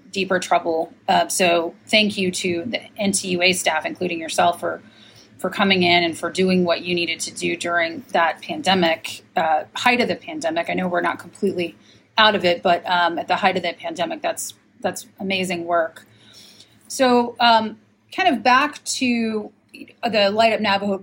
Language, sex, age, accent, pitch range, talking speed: English, female, 30-49, American, 185-230 Hz, 175 wpm